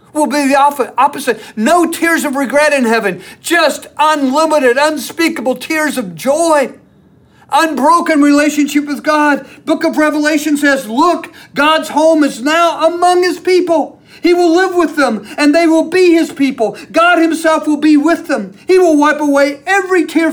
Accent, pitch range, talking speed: American, 205-310 Hz, 160 wpm